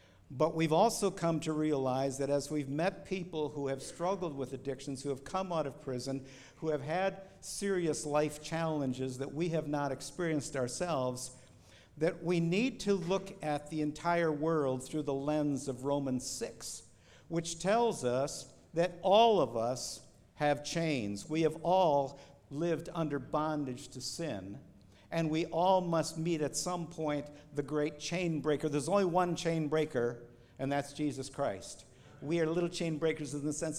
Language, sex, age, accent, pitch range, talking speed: English, male, 60-79, American, 140-175 Hz, 170 wpm